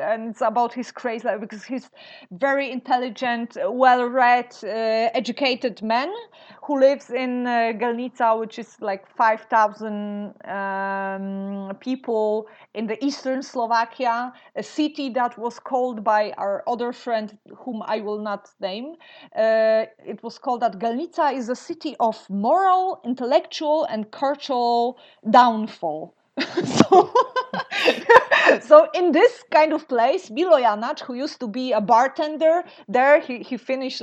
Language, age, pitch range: English, 30-49, 225-300 Hz